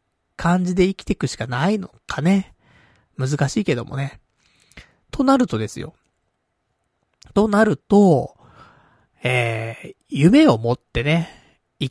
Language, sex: Japanese, male